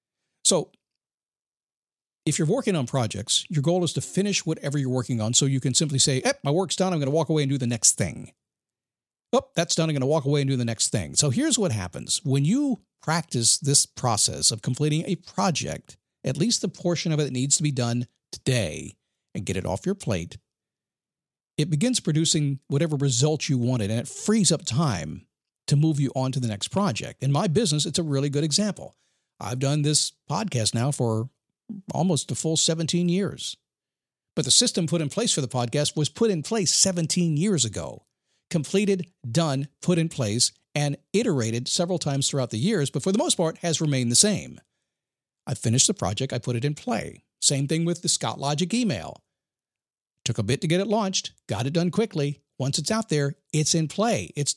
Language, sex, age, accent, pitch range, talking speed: English, male, 50-69, American, 130-175 Hz, 205 wpm